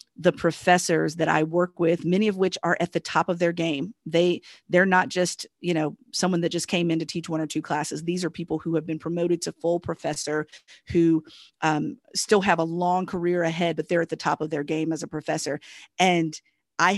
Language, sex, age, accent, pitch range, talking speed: English, female, 40-59, American, 160-175 Hz, 230 wpm